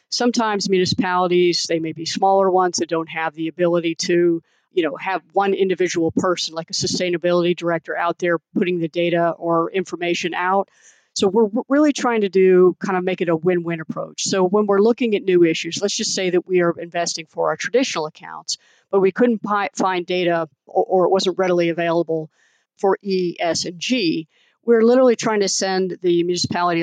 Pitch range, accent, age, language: 170-200 Hz, American, 50-69, English